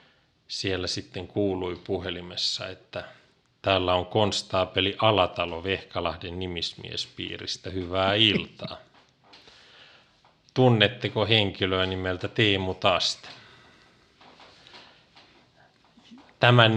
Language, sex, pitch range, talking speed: Finnish, male, 95-120 Hz, 70 wpm